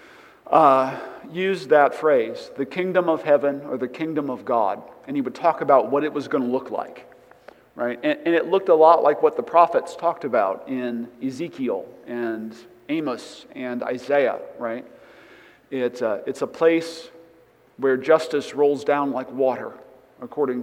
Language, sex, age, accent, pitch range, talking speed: English, male, 50-69, American, 135-170 Hz, 165 wpm